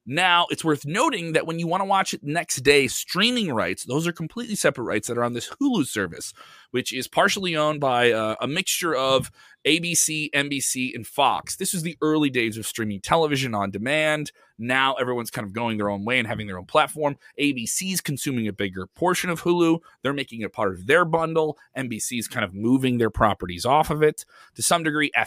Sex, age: male, 30-49